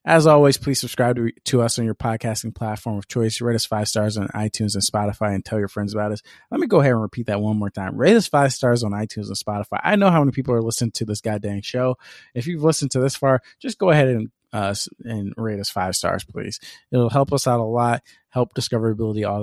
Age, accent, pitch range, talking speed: 20-39, American, 110-130 Hz, 255 wpm